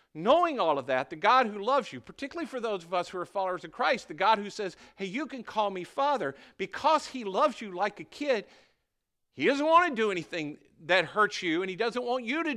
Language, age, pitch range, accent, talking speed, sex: English, 50-69, 170-240 Hz, American, 245 wpm, male